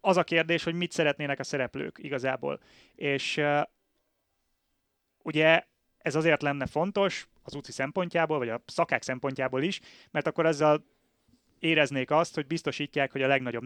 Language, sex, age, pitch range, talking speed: Hungarian, male, 30-49, 130-165 Hz, 150 wpm